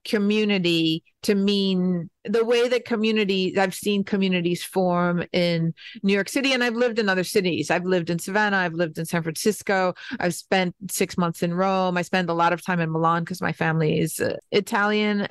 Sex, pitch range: female, 175-215 Hz